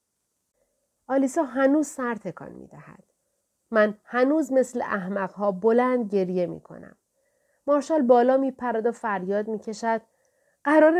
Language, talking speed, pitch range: Persian, 105 wpm, 195-260 Hz